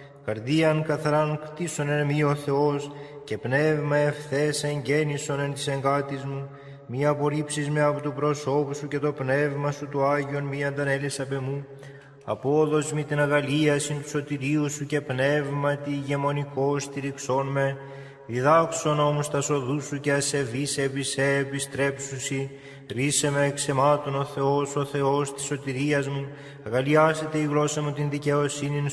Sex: male